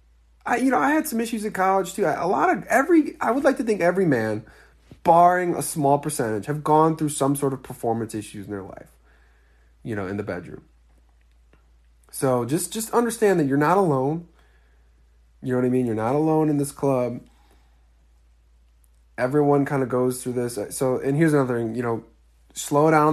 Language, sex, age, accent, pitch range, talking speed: English, male, 20-39, American, 110-155 Hz, 195 wpm